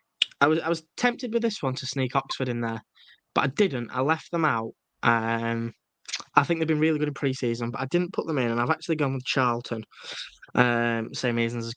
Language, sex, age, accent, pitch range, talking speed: English, male, 10-29, British, 115-155 Hz, 230 wpm